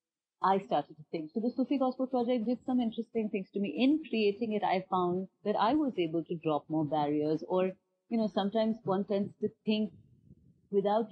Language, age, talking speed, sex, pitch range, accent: English, 40-59, 200 wpm, female, 165-215 Hz, Indian